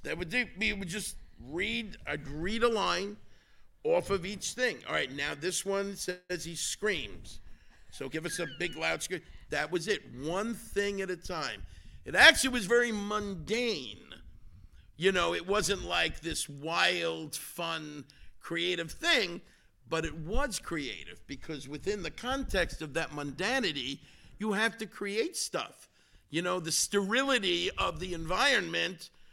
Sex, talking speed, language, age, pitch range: male, 155 wpm, English, 50-69, 150-210 Hz